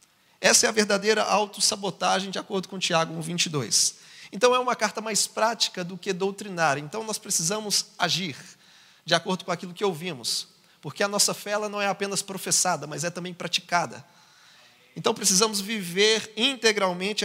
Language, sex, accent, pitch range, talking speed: Portuguese, male, Brazilian, 180-220 Hz, 165 wpm